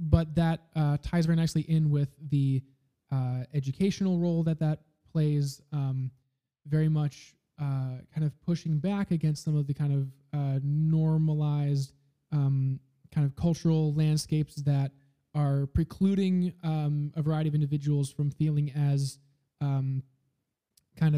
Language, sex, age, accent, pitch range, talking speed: English, male, 20-39, American, 140-160 Hz, 140 wpm